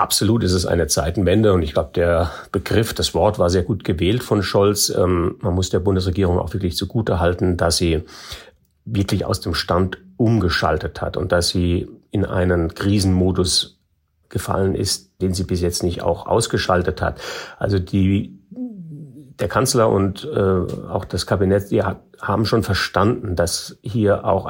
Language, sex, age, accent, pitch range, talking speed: German, male, 40-59, German, 90-105 Hz, 165 wpm